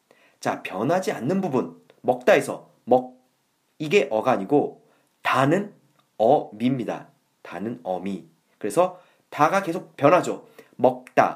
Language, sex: Korean, male